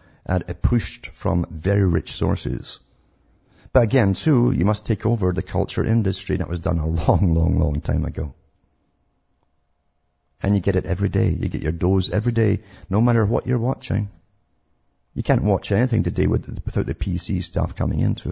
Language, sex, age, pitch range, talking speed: English, male, 50-69, 85-110 Hz, 185 wpm